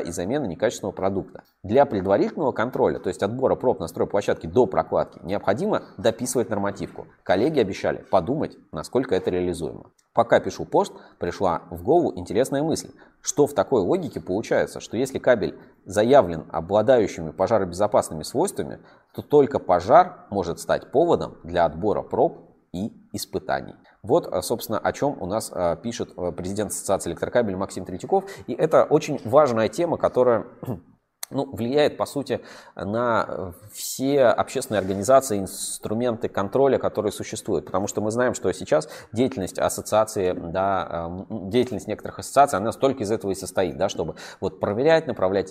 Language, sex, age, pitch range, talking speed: Russian, male, 20-39, 90-115 Hz, 140 wpm